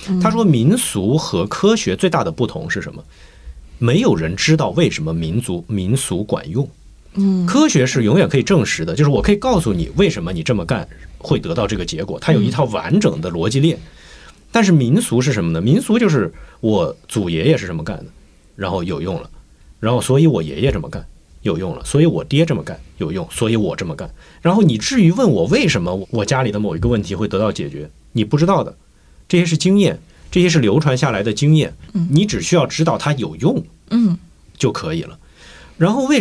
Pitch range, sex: 110-175 Hz, male